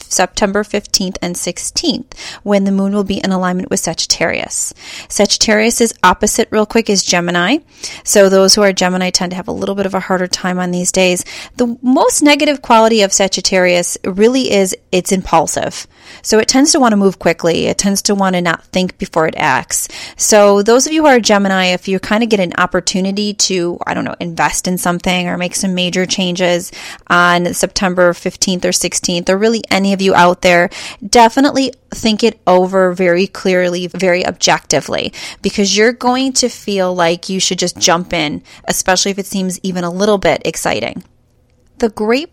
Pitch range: 175-205 Hz